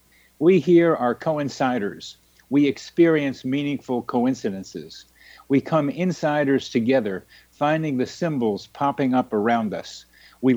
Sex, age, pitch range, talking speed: male, 50-69, 115-145 Hz, 115 wpm